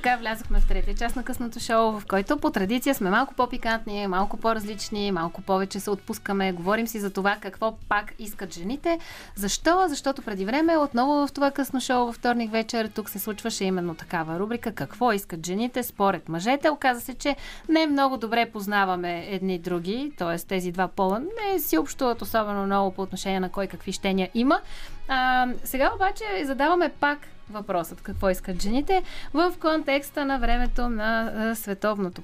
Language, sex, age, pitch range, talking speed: Bulgarian, female, 30-49, 200-280 Hz, 175 wpm